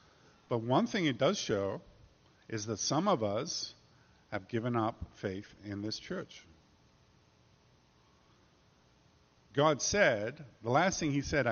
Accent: American